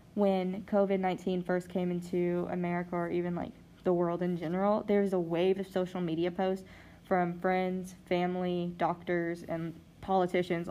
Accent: American